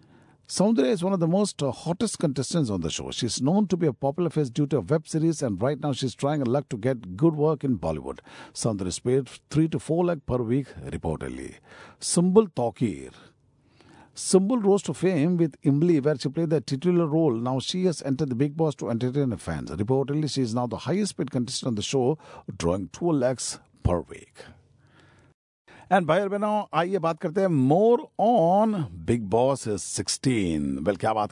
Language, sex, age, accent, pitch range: Japanese, male, 50-69, Indian, 120-160 Hz